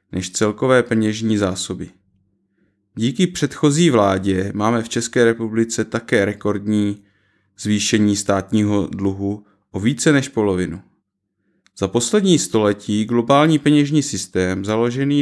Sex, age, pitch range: male, 30-49, 100-125 Hz